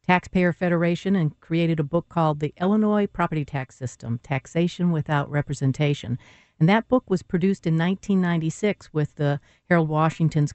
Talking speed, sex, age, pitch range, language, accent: 150 wpm, female, 60-79, 145-180 Hz, English, American